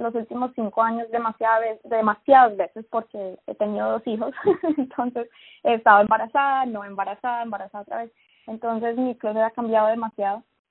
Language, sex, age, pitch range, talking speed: Spanish, female, 20-39, 210-250 Hz, 145 wpm